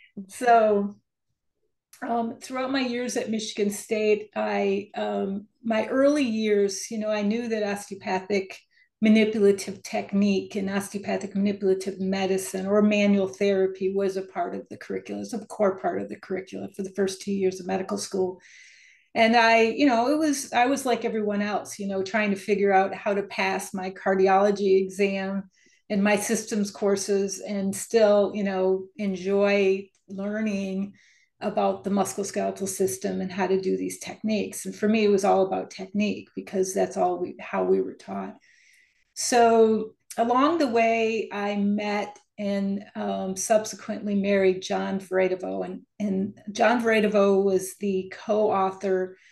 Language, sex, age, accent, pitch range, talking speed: English, female, 40-59, American, 190-215 Hz, 155 wpm